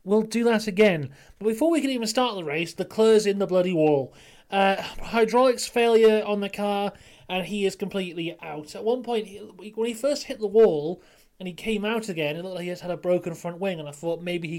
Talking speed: 235 wpm